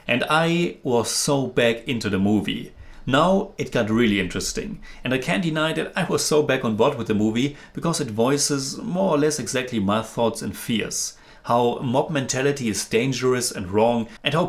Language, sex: English, male